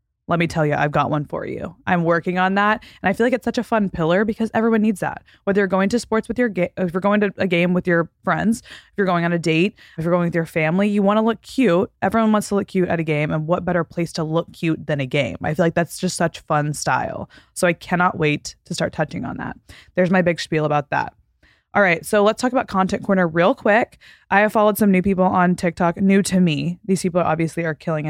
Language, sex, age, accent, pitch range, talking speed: English, female, 20-39, American, 170-205 Hz, 270 wpm